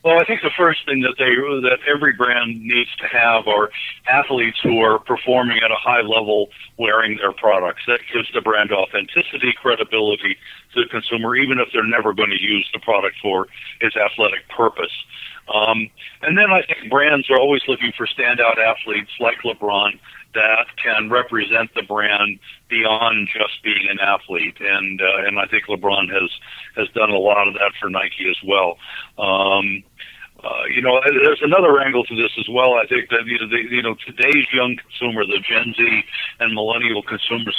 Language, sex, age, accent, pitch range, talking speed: English, male, 50-69, American, 105-120 Hz, 180 wpm